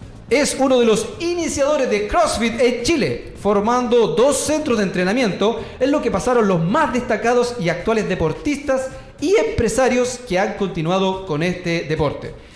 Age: 40-59